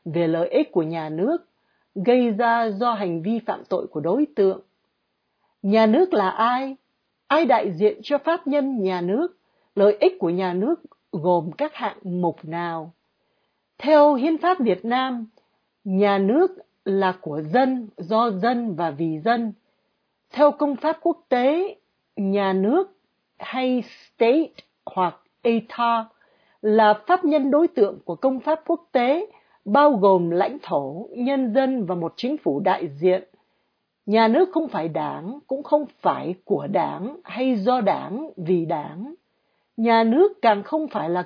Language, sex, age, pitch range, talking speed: Vietnamese, female, 60-79, 185-275 Hz, 155 wpm